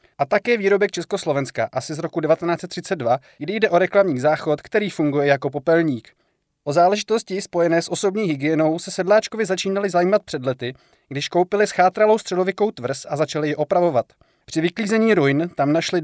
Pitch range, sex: 150-195 Hz, male